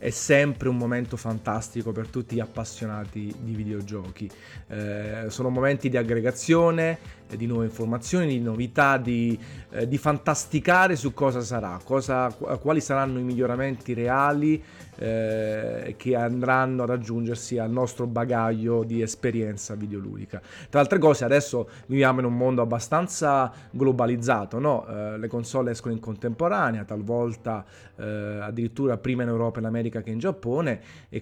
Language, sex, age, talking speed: Italian, male, 30-49, 145 wpm